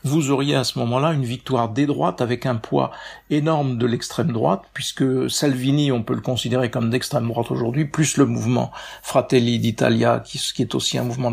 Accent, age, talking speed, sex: French, 50-69, 180 wpm, male